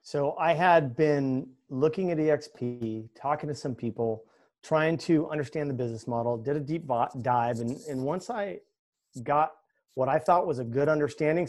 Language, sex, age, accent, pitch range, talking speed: English, male, 30-49, American, 130-165 Hz, 180 wpm